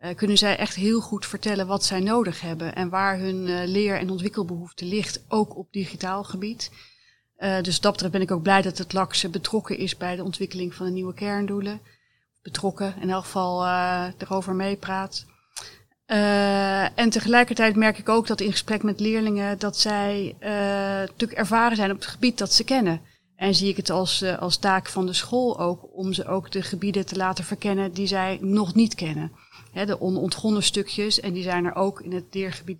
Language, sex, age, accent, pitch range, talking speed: Dutch, female, 30-49, Dutch, 180-205 Hz, 200 wpm